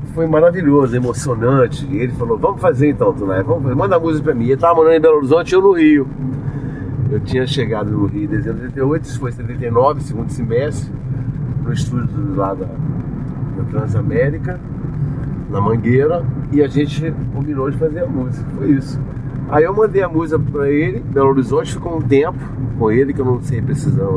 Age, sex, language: 40-59, male, Portuguese